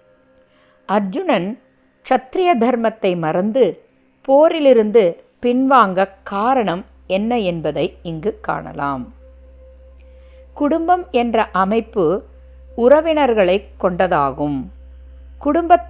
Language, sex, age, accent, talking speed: Tamil, female, 50-69, native, 60 wpm